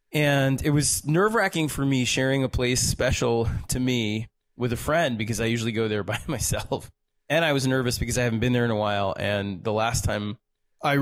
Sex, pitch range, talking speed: male, 105-130 Hz, 220 wpm